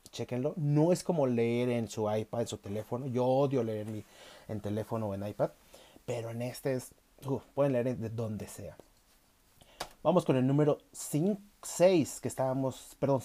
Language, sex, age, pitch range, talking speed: Spanish, male, 30-49, 105-135 Hz, 180 wpm